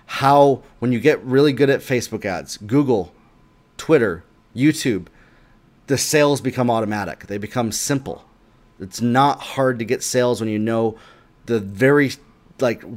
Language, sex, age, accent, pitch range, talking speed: English, male, 30-49, American, 115-150 Hz, 145 wpm